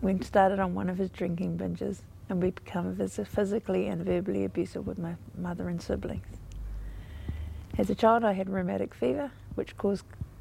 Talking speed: 165 wpm